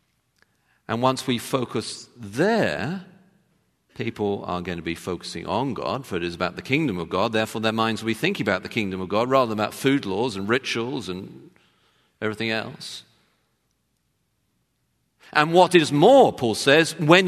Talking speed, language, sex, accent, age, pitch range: 170 wpm, English, male, British, 50-69, 95-135 Hz